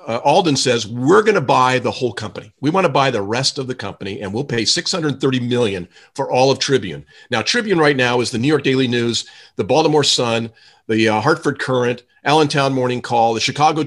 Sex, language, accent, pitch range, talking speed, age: male, English, American, 120-195 Hz, 215 wpm, 50-69